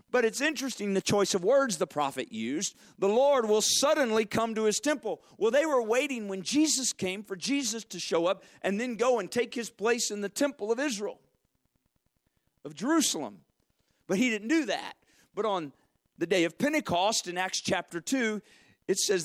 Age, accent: 40-59, American